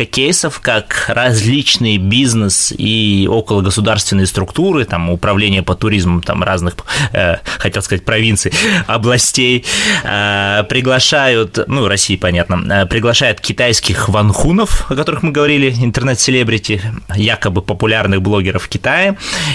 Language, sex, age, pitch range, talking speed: Russian, male, 20-39, 95-125 Hz, 110 wpm